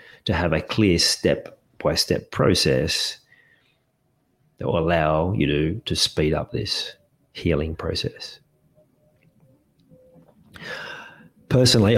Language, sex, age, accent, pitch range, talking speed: English, male, 30-49, Australian, 75-90 Hz, 90 wpm